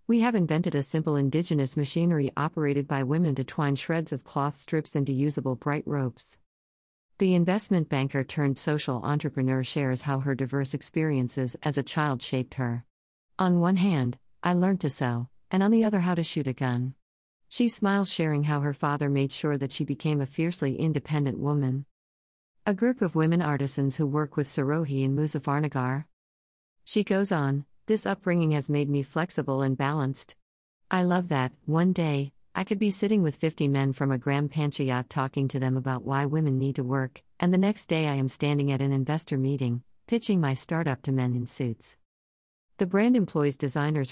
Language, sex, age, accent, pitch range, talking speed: English, female, 50-69, American, 135-165 Hz, 185 wpm